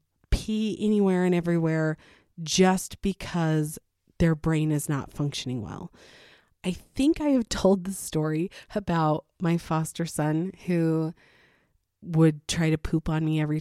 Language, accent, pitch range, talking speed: English, American, 150-185 Hz, 130 wpm